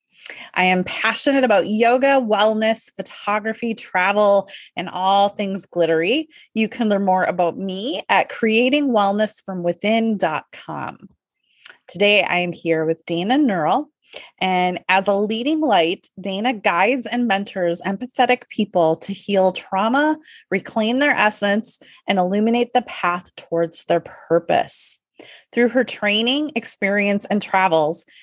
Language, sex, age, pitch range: English, female, 30-49, 185-235 Hz